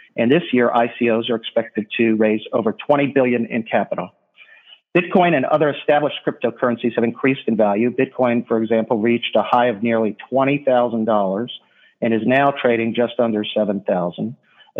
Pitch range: 110-130 Hz